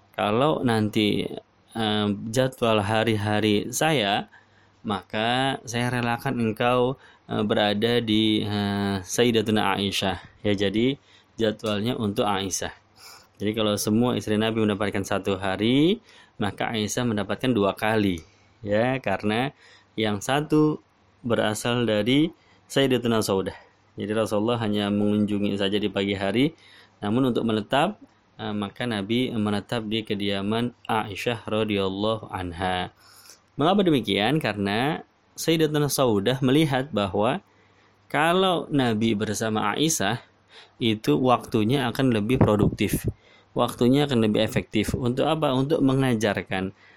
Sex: male